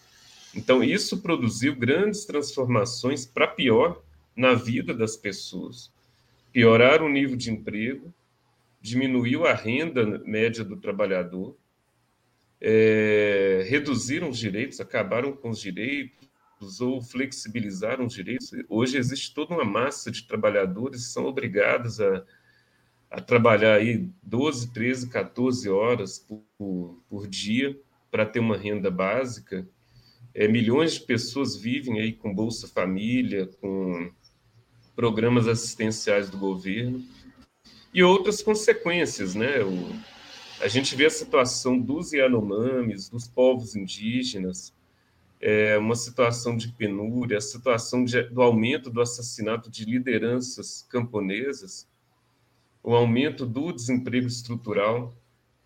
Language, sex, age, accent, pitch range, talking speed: Portuguese, male, 40-59, Brazilian, 110-130 Hz, 110 wpm